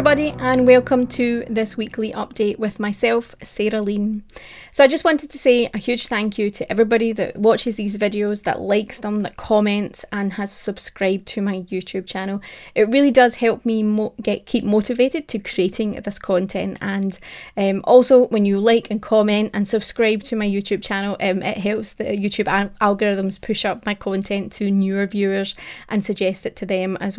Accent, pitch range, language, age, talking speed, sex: British, 195-230 Hz, English, 20-39, 190 wpm, female